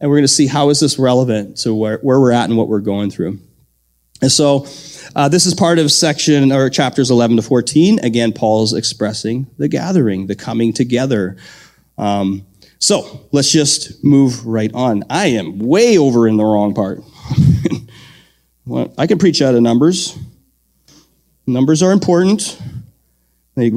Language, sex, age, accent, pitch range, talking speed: English, male, 30-49, American, 120-175 Hz, 165 wpm